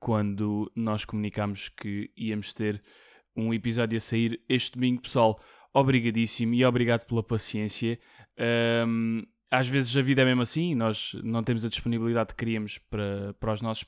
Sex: male